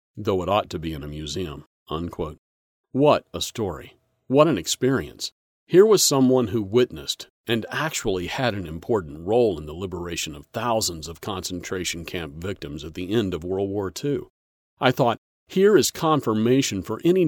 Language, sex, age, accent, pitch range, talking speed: English, male, 40-59, American, 85-125 Hz, 165 wpm